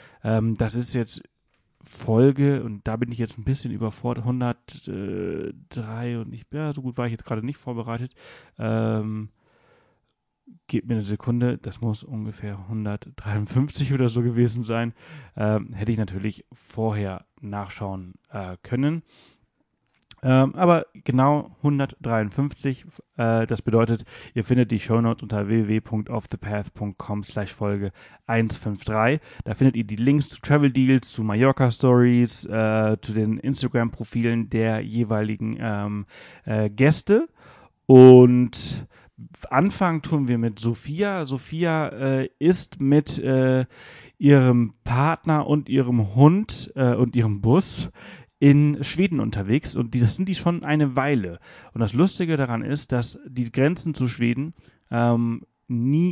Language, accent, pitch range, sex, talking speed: German, German, 110-140 Hz, male, 130 wpm